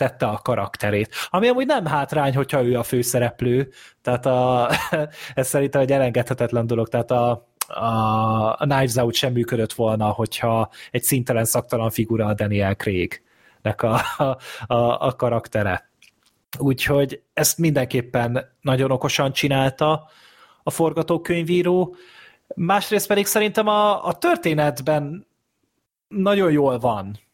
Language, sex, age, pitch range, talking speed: Hungarian, male, 30-49, 120-150 Hz, 125 wpm